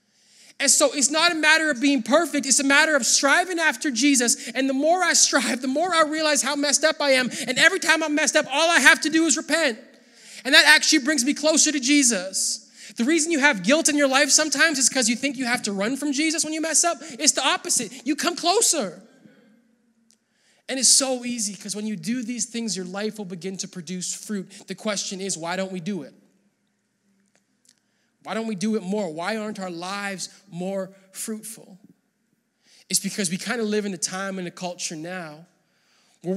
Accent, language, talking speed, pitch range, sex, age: American, English, 215 wpm, 180-275 Hz, male, 20-39